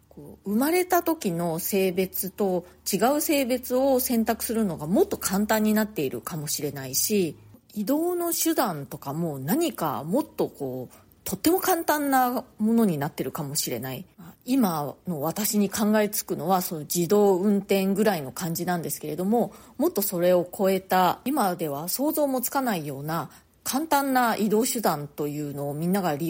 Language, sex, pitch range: Japanese, female, 165-230 Hz